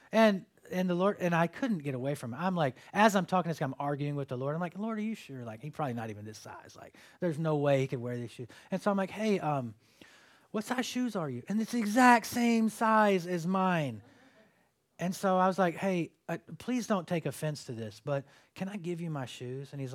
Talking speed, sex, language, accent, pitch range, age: 260 wpm, male, English, American, 140-195 Hz, 30-49